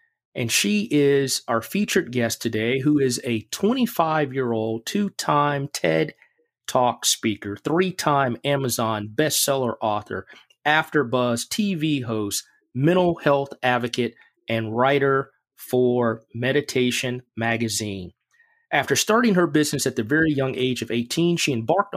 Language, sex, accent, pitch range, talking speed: English, male, American, 120-165 Hz, 115 wpm